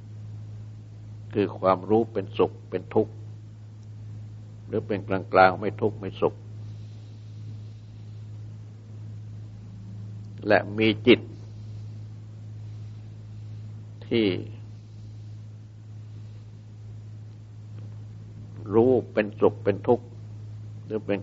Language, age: Thai, 60-79